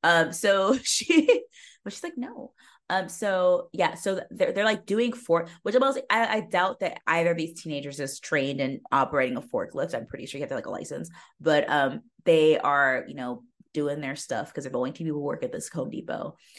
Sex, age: female, 20-39